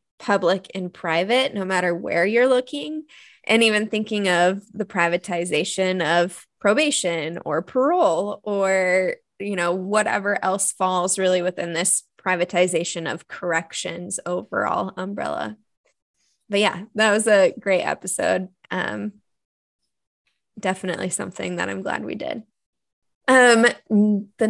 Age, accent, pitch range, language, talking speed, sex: 20-39, American, 180-215 Hz, English, 120 wpm, female